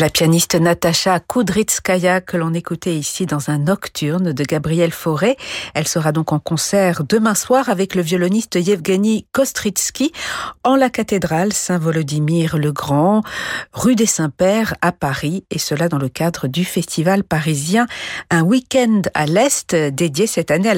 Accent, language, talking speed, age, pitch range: French, French, 155 wpm, 50-69, 160-210 Hz